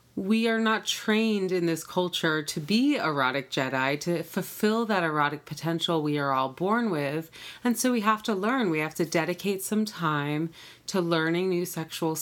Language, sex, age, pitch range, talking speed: English, female, 30-49, 155-190 Hz, 180 wpm